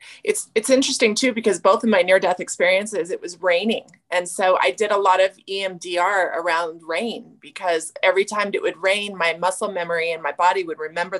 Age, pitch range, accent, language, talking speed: 30-49, 180-235 Hz, American, English, 200 wpm